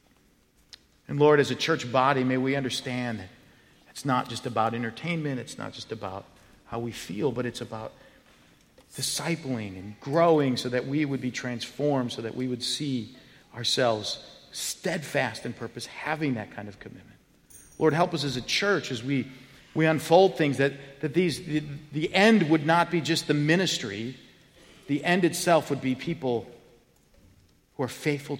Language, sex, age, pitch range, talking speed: English, male, 40-59, 110-140 Hz, 170 wpm